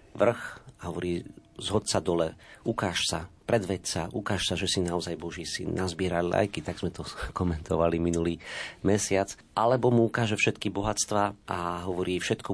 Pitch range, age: 85-100 Hz, 40-59